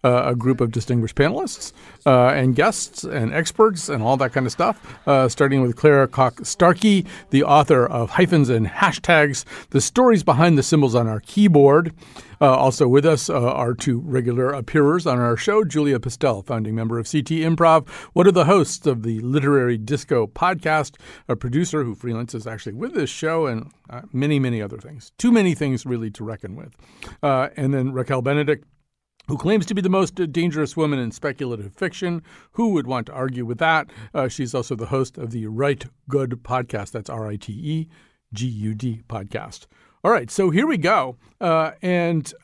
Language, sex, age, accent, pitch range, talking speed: English, male, 50-69, American, 125-165 Hz, 180 wpm